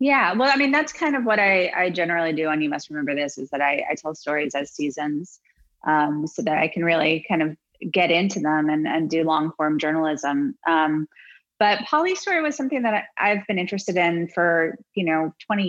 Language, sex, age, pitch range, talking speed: English, female, 30-49, 155-180 Hz, 220 wpm